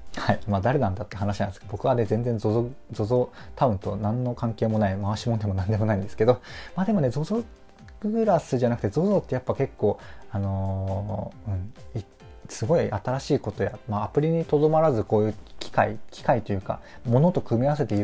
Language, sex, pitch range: Japanese, male, 105-140 Hz